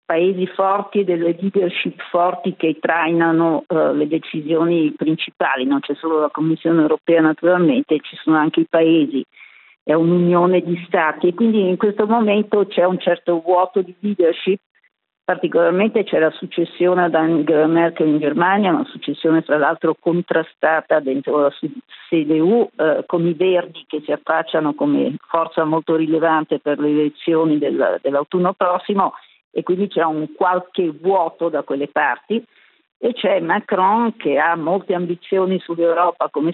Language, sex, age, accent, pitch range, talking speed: Italian, female, 50-69, native, 160-185 Hz, 155 wpm